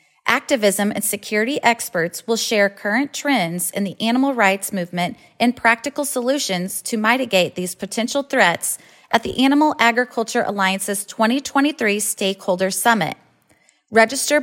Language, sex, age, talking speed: English, female, 30-49, 125 wpm